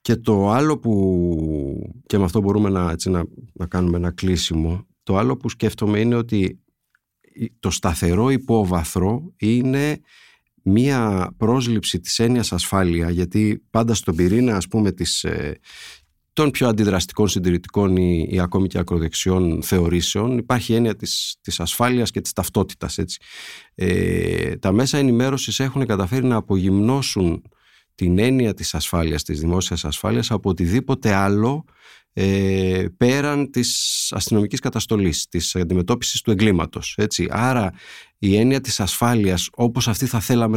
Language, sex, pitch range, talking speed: Greek, male, 90-120 Hz, 140 wpm